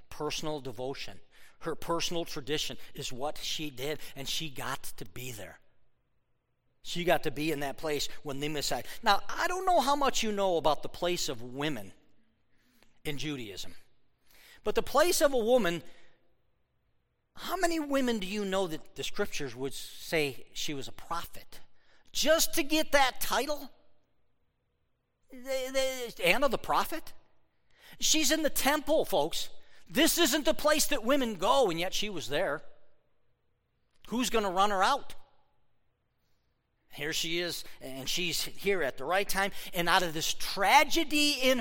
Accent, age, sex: American, 40-59, male